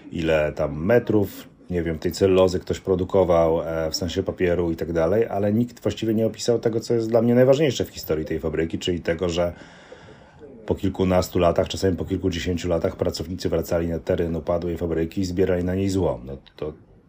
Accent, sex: native, male